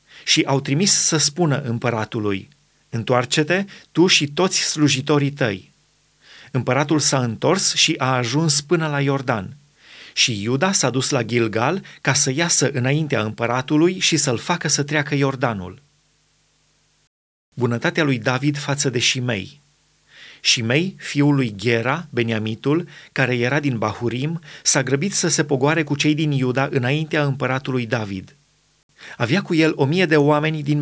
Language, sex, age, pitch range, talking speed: Romanian, male, 30-49, 125-155 Hz, 140 wpm